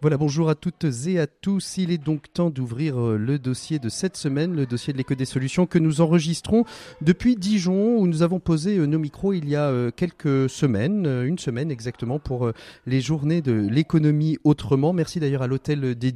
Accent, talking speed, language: French, 195 wpm, French